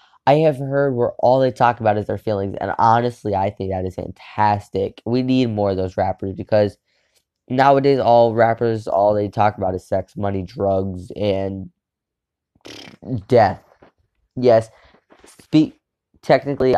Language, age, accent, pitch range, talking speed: English, 10-29, American, 100-120 Hz, 145 wpm